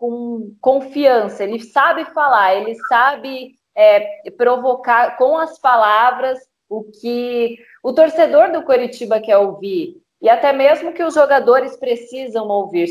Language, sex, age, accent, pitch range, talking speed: Portuguese, female, 20-39, Brazilian, 215-290 Hz, 125 wpm